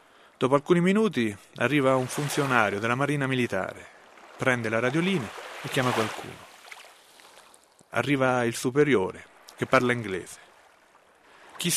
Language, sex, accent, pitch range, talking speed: Italian, male, native, 115-140 Hz, 110 wpm